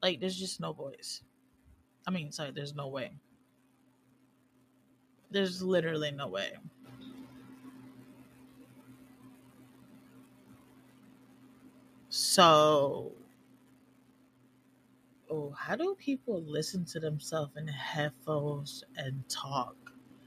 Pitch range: 150-185 Hz